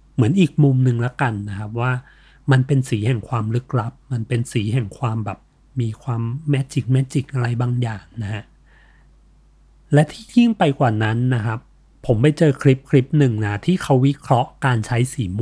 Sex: male